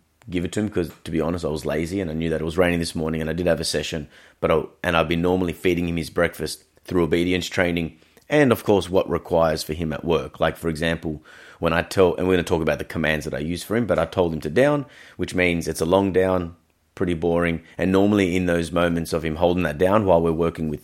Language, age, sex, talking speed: English, 30-49, male, 275 wpm